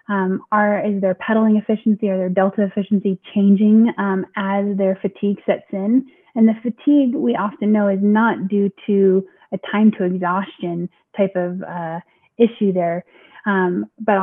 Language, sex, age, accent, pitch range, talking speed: English, female, 20-39, American, 185-215 Hz, 160 wpm